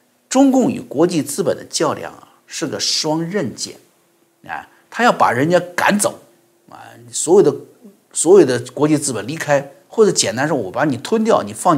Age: 50-69